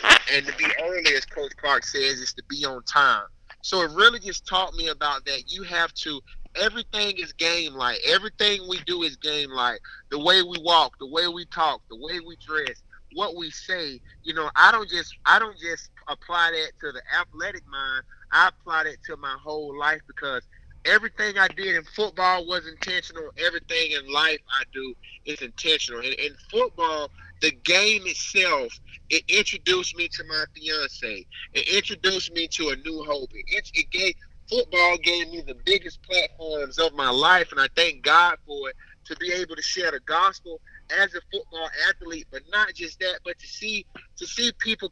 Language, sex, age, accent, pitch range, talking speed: English, male, 30-49, American, 155-220 Hz, 190 wpm